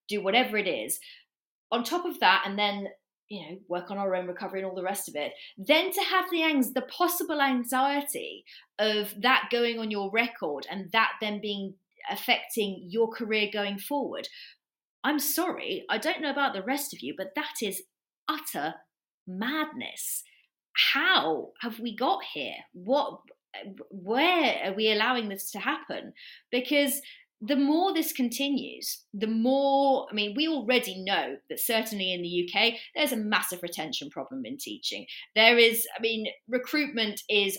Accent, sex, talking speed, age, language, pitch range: British, female, 165 wpm, 30-49, English, 200-280 Hz